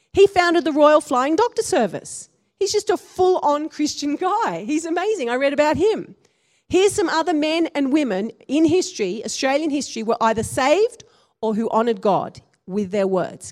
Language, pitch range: English, 215-280 Hz